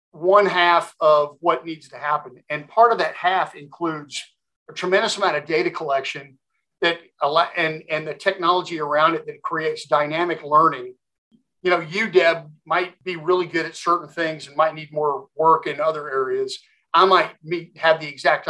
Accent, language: American, English